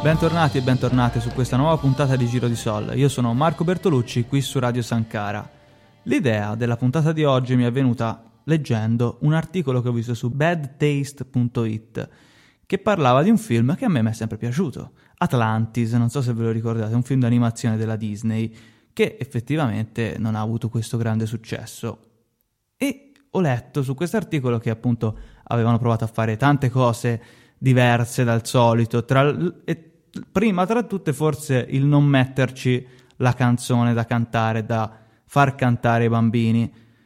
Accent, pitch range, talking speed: native, 115-145 Hz, 165 wpm